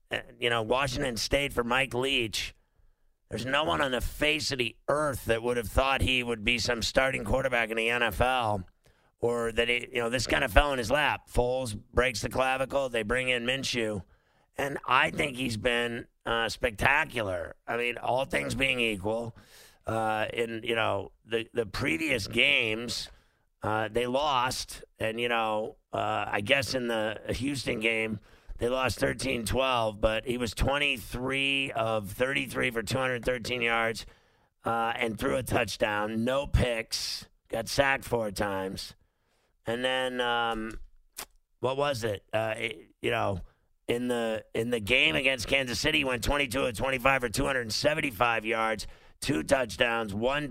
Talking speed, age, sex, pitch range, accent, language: 160 wpm, 50-69, male, 110-130 Hz, American, English